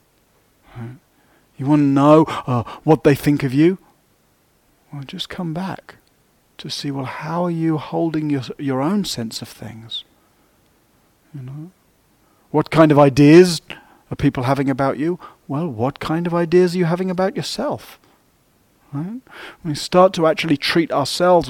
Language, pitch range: English, 130-160 Hz